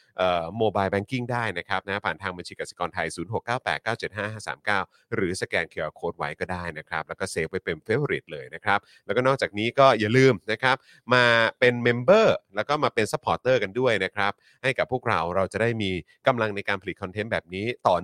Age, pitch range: 30-49, 90-130 Hz